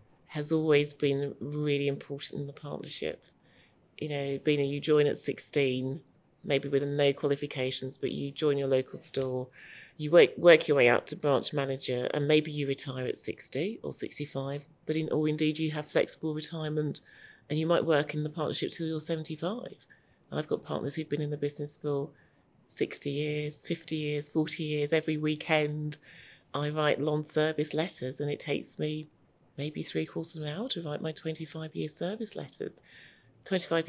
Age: 30-49